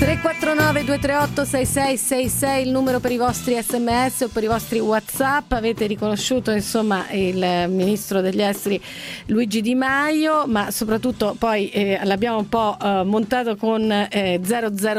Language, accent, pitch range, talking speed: Italian, native, 205-250 Hz, 130 wpm